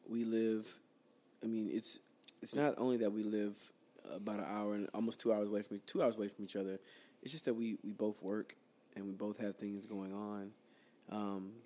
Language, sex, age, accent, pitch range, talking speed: English, male, 20-39, American, 100-110 Hz, 210 wpm